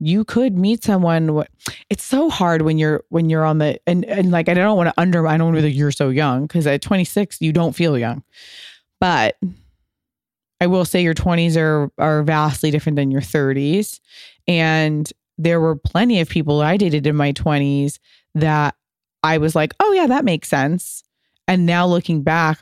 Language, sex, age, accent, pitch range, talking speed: English, female, 20-39, American, 145-175 Hz, 195 wpm